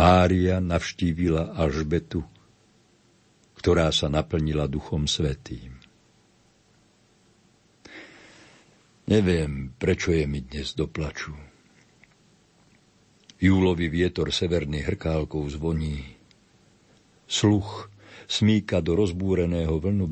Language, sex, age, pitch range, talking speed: Slovak, male, 60-79, 80-95 Hz, 70 wpm